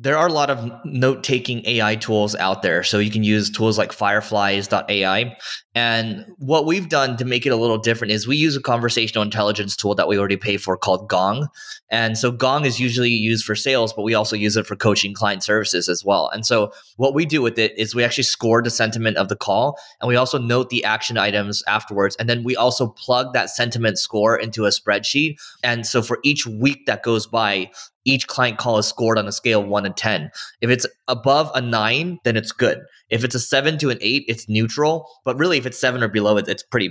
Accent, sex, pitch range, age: American, male, 105-130 Hz, 20-39